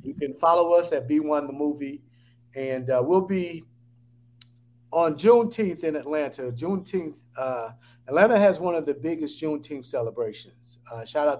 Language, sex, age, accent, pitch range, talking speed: English, male, 50-69, American, 120-145 Hz, 160 wpm